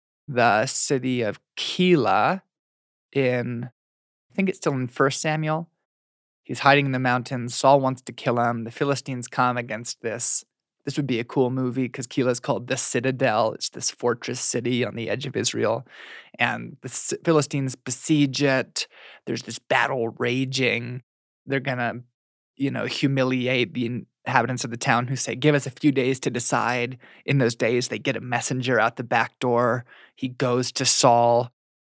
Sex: male